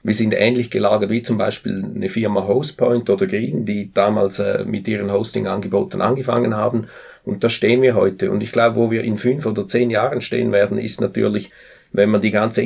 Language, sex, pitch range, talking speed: German, male, 105-120 Hz, 205 wpm